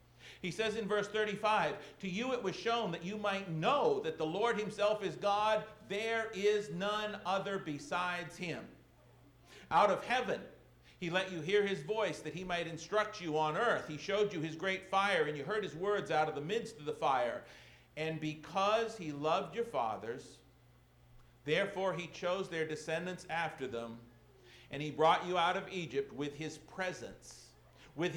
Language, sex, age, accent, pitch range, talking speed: English, male, 50-69, American, 155-210 Hz, 180 wpm